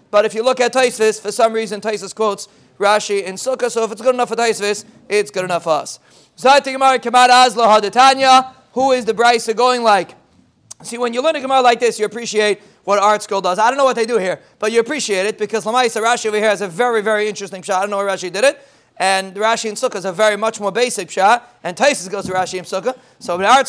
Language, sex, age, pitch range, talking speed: English, male, 30-49, 205-260 Hz, 250 wpm